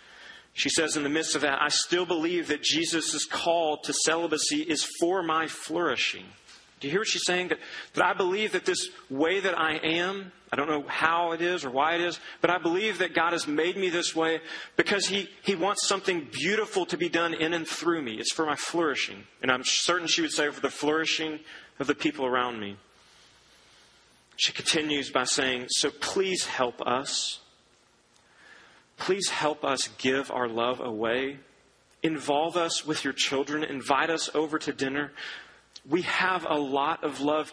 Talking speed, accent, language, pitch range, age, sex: 185 wpm, American, English, 120-165 Hz, 40-59, male